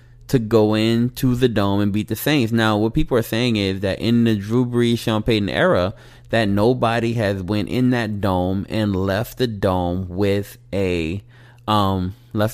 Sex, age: male, 20-39